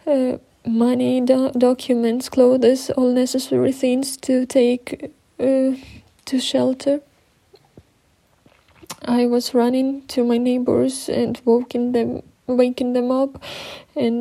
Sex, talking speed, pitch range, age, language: female, 105 wpm, 230-255 Hz, 20-39, Ukrainian